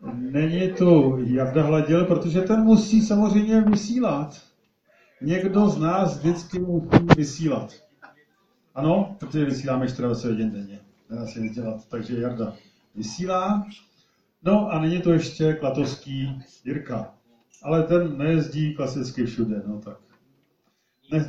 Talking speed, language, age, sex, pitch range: 120 wpm, Czech, 40-59, male, 130-180 Hz